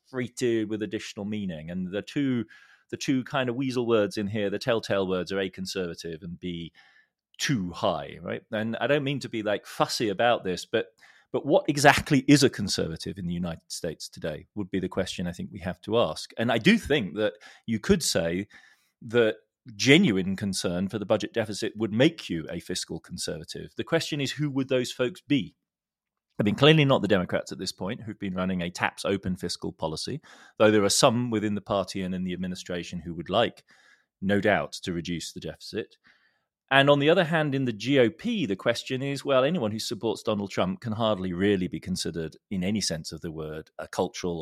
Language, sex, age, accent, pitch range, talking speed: English, male, 30-49, British, 90-130 Hz, 210 wpm